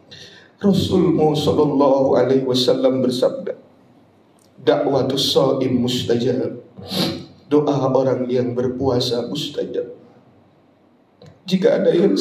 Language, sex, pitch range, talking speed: Indonesian, male, 155-255 Hz, 70 wpm